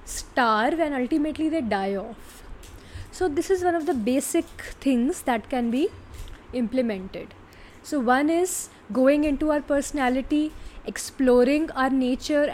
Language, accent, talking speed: English, Indian, 135 wpm